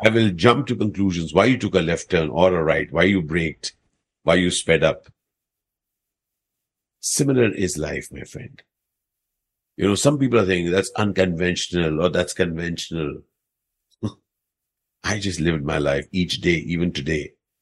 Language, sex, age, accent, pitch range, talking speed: Malayalam, male, 50-69, native, 90-125 Hz, 155 wpm